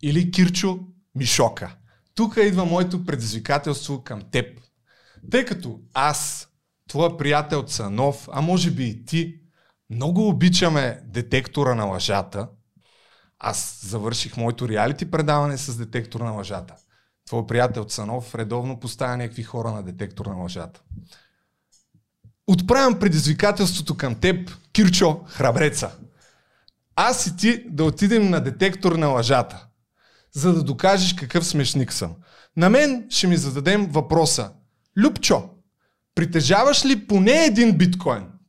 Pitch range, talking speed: 125-190 Hz, 120 wpm